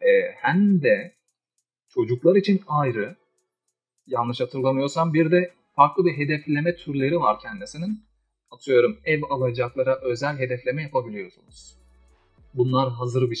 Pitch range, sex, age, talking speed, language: 125-165 Hz, male, 40-59, 110 wpm, Turkish